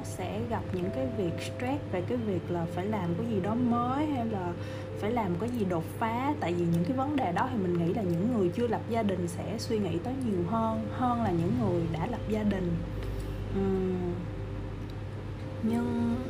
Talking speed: 205 wpm